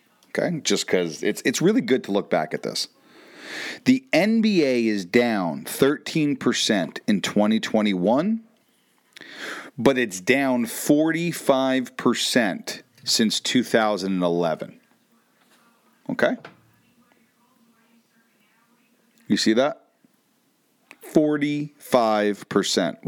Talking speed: 80 wpm